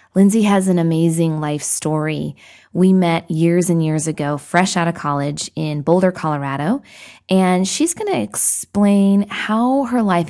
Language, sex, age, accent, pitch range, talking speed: English, female, 20-39, American, 160-200 Hz, 155 wpm